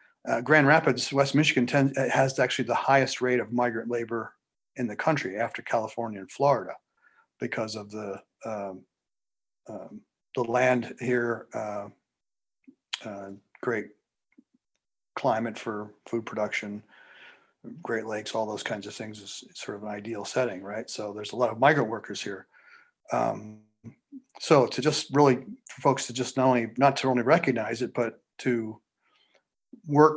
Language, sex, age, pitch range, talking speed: English, male, 40-59, 110-135 Hz, 150 wpm